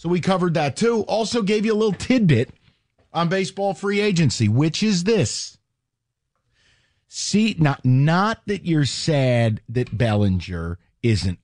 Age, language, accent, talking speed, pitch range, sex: 40-59, English, American, 140 wpm, 110-155 Hz, male